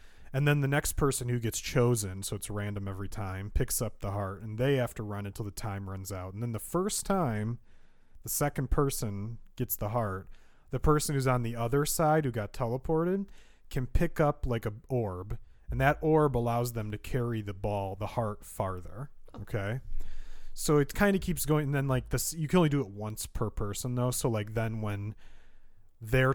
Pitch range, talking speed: 105-125 Hz, 205 wpm